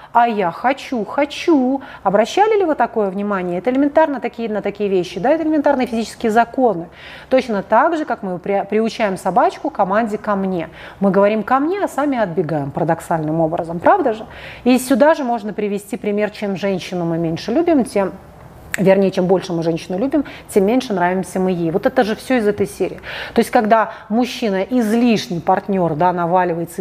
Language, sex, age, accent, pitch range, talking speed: Russian, female, 30-49, native, 185-255 Hz, 170 wpm